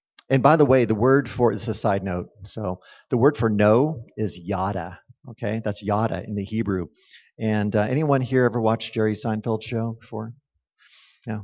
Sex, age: male, 40-59